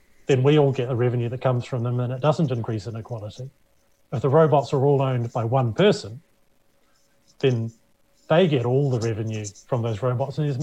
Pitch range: 120-145 Hz